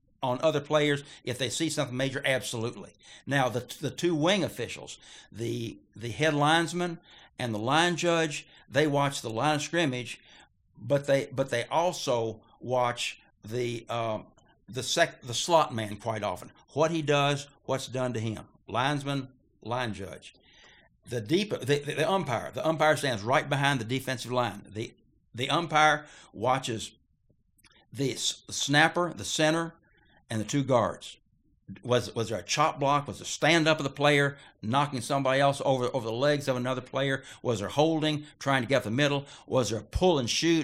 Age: 60-79